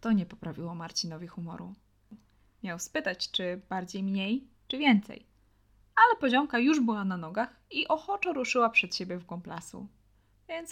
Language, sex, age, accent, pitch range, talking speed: Polish, female, 20-39, native, 165-245 Hz, 145 wpm